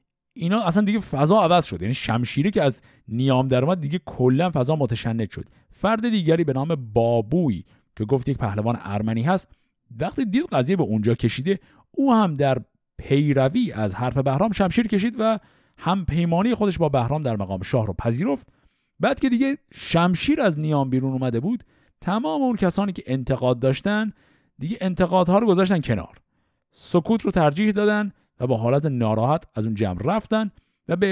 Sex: male